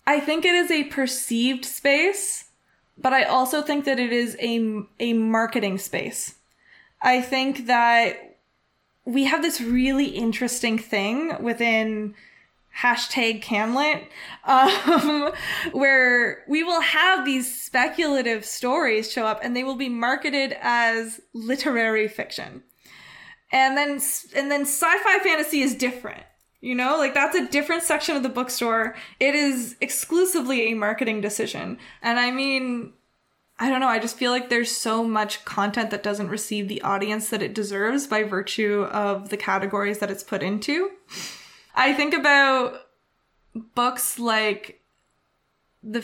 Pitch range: 220-280 Hz